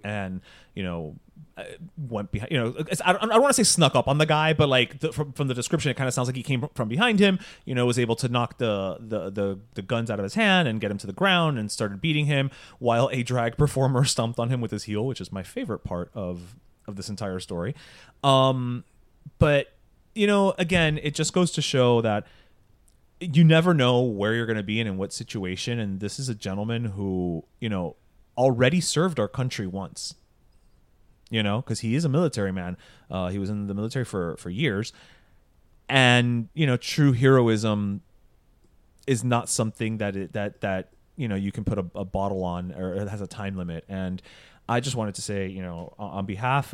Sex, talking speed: male, 220 wpm